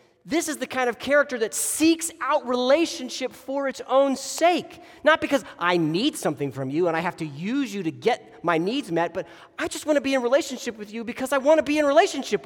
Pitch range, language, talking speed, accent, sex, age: 185-280 Hz, English, 235 wpm, American, male, 30-49